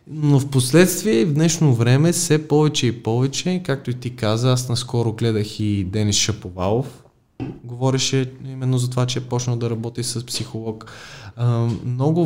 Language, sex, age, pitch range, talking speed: Bulgarian, male, 20-39, 115-135 Hz, 155 wpm